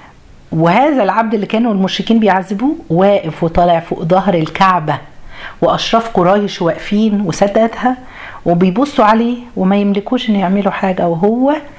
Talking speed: 115 wpm